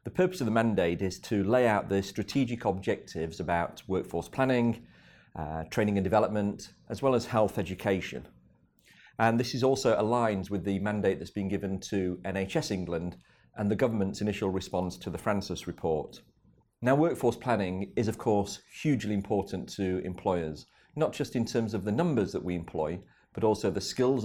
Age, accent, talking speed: 40-59, British, 175 wpm